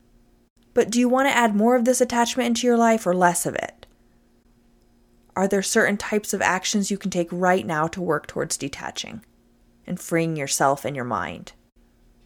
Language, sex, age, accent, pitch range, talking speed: English, female, 20-39, American, 175-235 Hz, 185 wpm